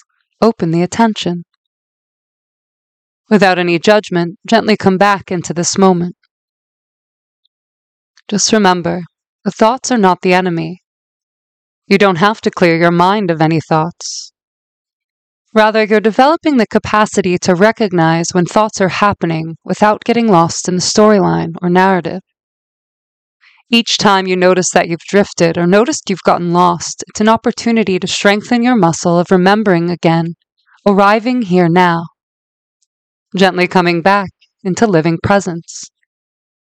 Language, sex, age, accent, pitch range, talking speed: English, female, 20-39, American, 170-205 Hz, 130 wpm